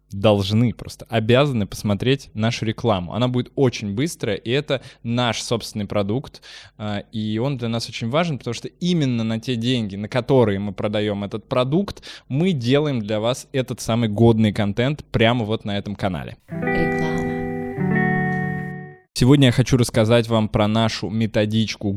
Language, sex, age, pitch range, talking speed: Russian, male, 20-39, 110-130 Hz, 150 wpm